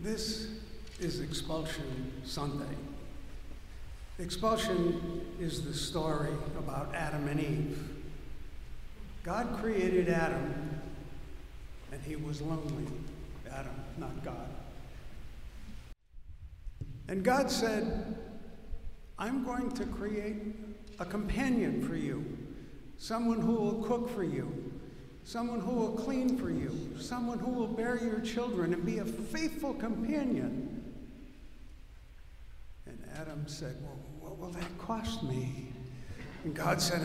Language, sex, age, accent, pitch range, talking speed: English, male, 60-79, American, 150-220 Hz, 110 wpm